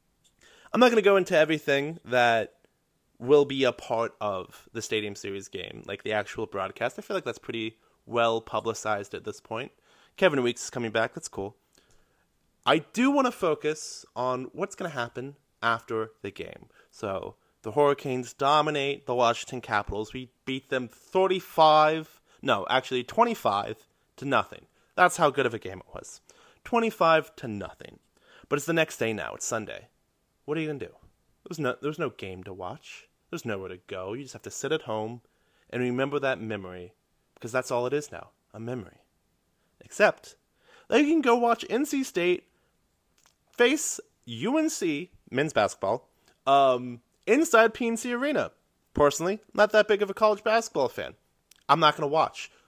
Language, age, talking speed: English, 30-49, 175 wpm